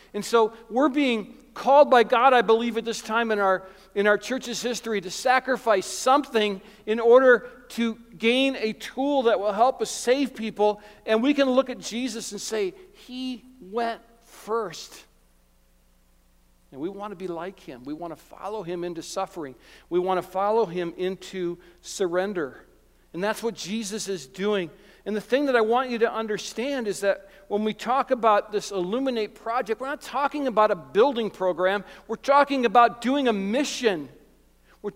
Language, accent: English, American